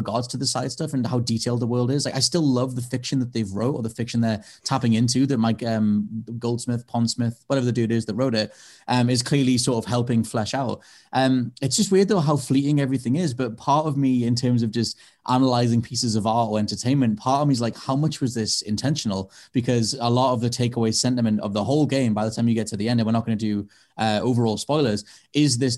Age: 20-39